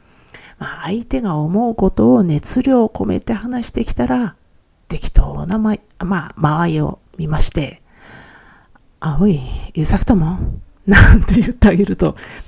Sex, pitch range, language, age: female, 160-220 Hz, Japanese, 50-69